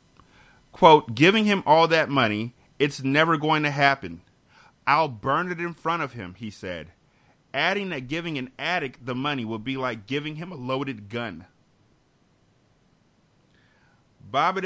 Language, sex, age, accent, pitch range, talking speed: English, male, 30-49, American, 125-155 Hz, 145 wpm